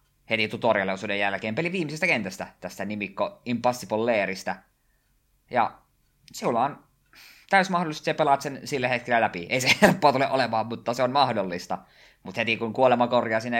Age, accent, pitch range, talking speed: 20-39, native, 95-125 Hz, 155 wpm